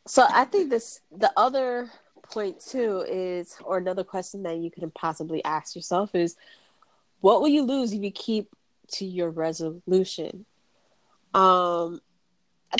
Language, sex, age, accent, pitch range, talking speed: English, female, 20-39, American, 175-210 Hz, 145 wpm